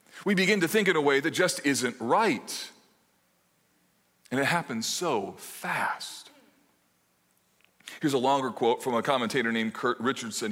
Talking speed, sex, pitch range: 150 wpm, male, 130-200 Hz